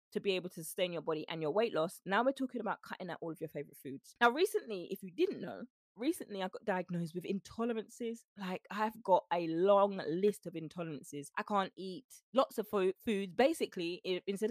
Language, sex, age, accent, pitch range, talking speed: English, female, 20-39, British, 160-205 Hz, 210 wpm